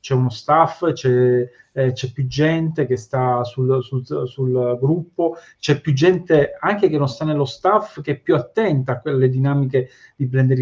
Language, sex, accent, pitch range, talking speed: Italian, male, native, 130-160 Hz, 170 wpm